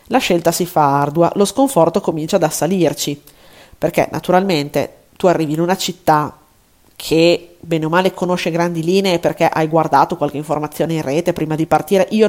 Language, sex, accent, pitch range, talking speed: Italian, female, native, 165-190 Hz, 170 wpm